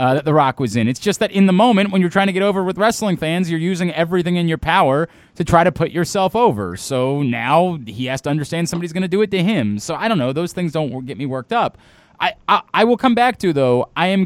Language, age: English, 20-39